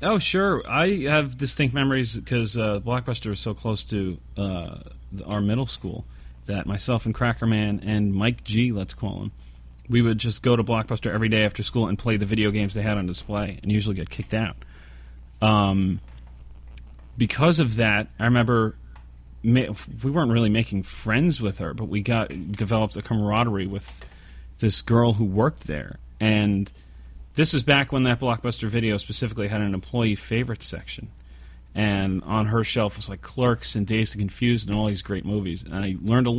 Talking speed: 185 wpm